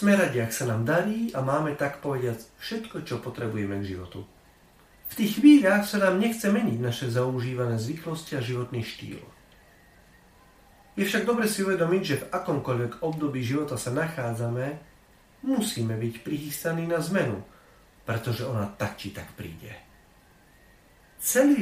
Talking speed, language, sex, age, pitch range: 145 wpm, Slovak, male, 40-59, 115-170 Hz